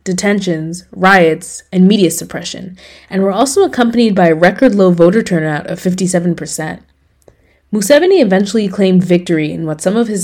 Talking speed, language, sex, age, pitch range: 145 wpm, English, female, 20-39, 165-195 Hz